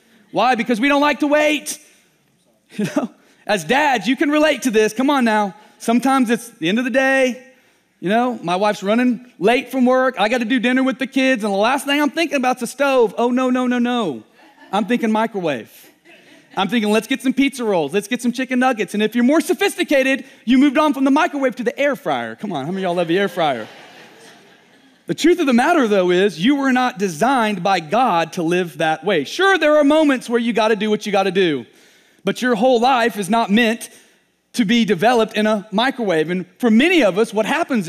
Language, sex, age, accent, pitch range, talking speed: English, male, 30-49, American, 195-265 Hz, 230 wpm